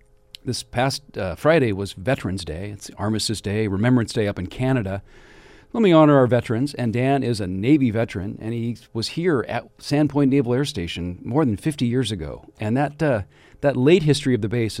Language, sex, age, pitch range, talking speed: English, male, 40-59, 100-135 Hz, 195 wpm